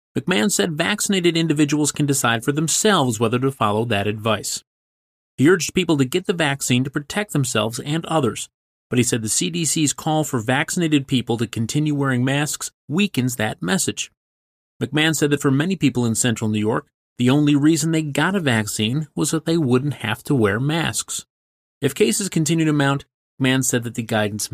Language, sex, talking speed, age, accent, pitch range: English, male, 185 wpm, 30-49, American, 110-155 Hz